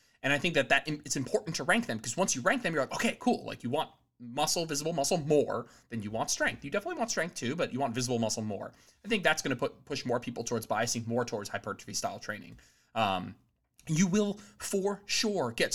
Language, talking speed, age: English, 235 wpm, 20-39